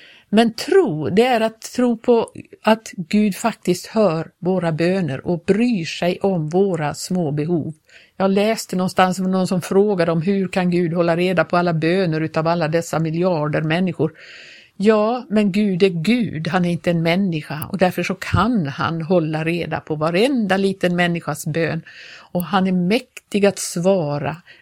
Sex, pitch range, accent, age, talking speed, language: female, 170-210 Hz, native, 50-69, 170 wpm, Swedish